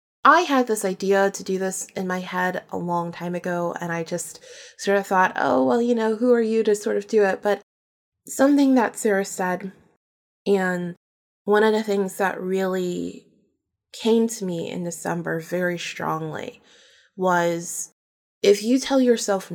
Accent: American